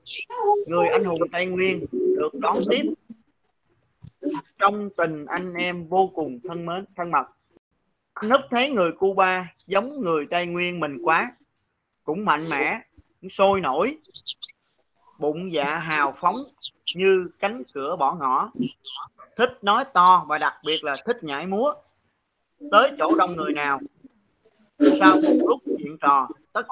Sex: male